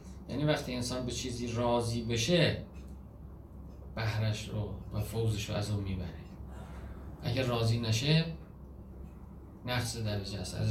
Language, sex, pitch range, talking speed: Persian, male, 90-130 Hz, 125 wpm